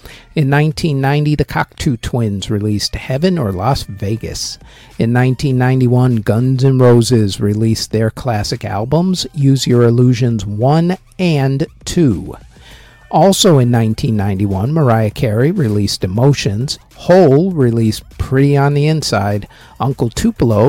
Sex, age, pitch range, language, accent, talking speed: male, 50-69, 110-140 Hz, English, American, 115 wpm